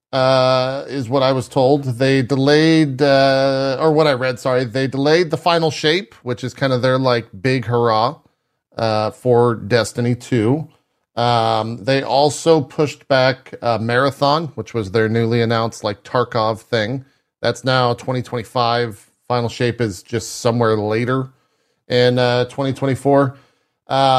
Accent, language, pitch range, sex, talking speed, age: American, English, 120-145 Hz, male, 145 wpm, 40-59